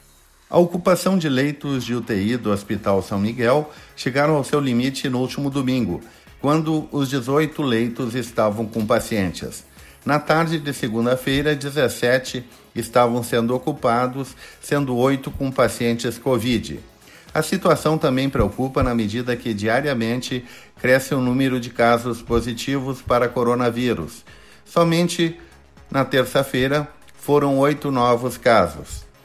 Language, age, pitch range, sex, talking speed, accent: Portuguese, 50-69, 115-145 Hz, male, 125 wpm, Brazilian